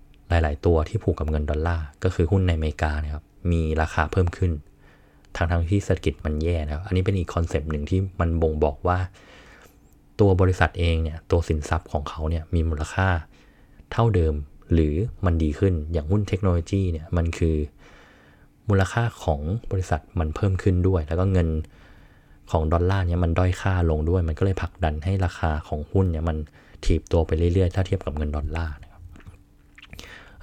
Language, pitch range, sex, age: Thai, 80-95 Hz, male, 20-39